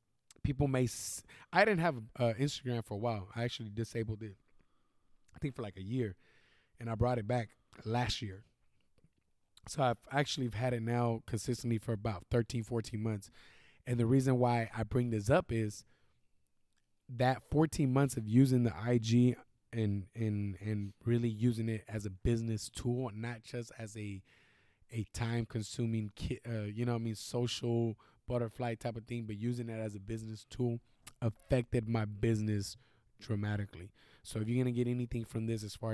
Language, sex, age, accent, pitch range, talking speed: English, male, 20-39, American, 110-125 Hz, 180 wpm